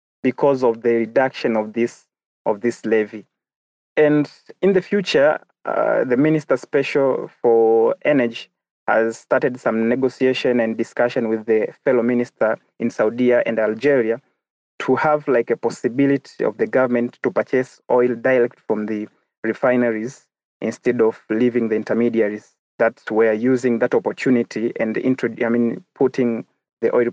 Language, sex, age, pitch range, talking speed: English, male, 30-49, 115-130 Hz, 140 wpm